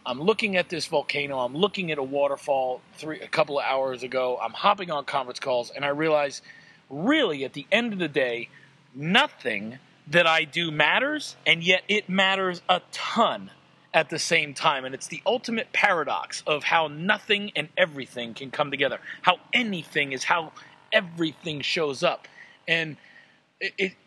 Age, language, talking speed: 40-59, English, 170 wpm